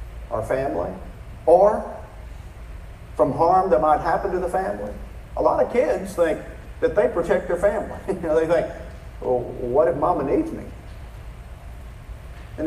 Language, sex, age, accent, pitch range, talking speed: English, male, 50-69, American, 100-150 Hz, 150 wpm